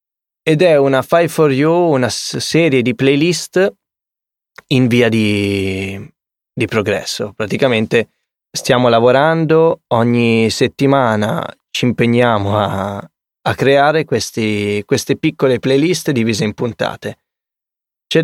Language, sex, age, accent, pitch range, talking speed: Italian, male, 20-39, native, 110-140 Hz, 110 wpm